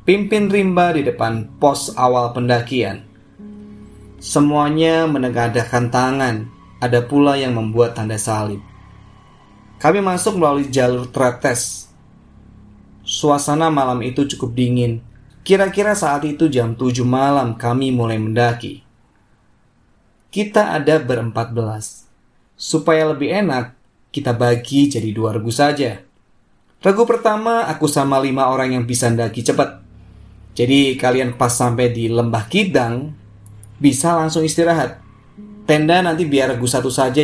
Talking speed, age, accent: 120 wpm, 20-39, native